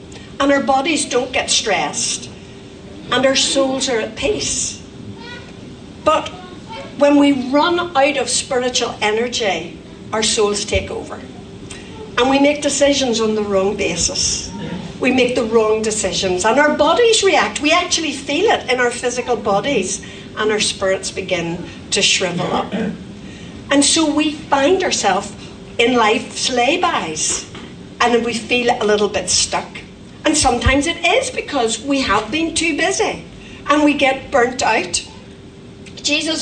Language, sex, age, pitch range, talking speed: English, female, 60-79, 210-280 Hz, 145 wpm